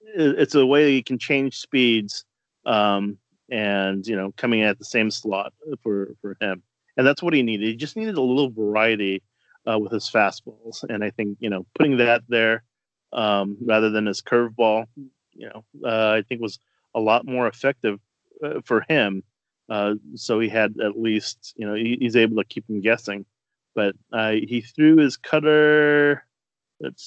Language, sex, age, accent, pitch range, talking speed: English, male, 30-49, American, 105-125 Hz, 185 wpm